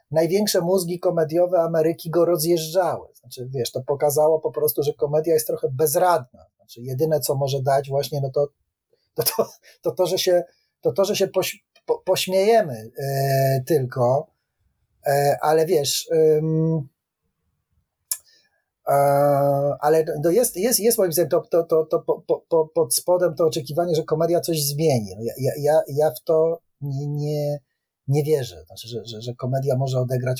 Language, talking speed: Polish, 165 wpm